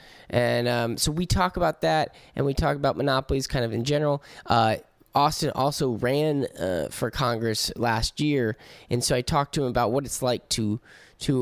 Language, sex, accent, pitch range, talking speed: English, male, American, 105-140 Hz, 195 wpm